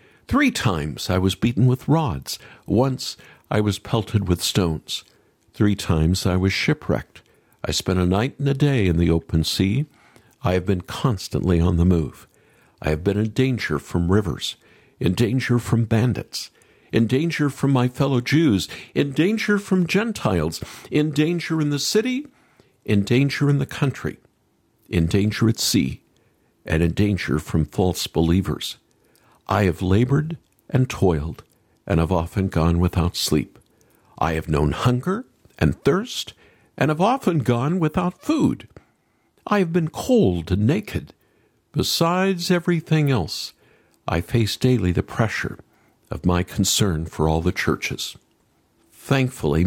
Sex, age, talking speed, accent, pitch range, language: male, 60-79, 145 wpm, American, 90-145 Hz, English